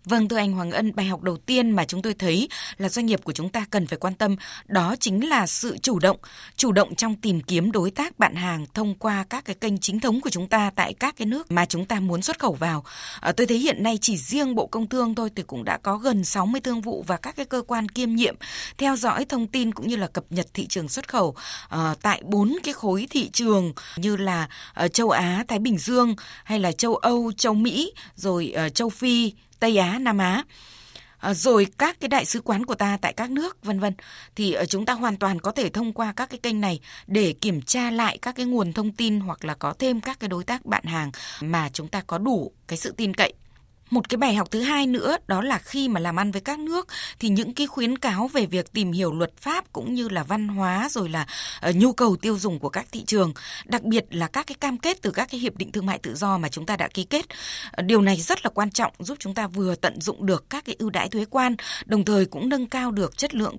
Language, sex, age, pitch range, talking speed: Vietnamese, female, 20-39, 185-240 Hz, 255 wpm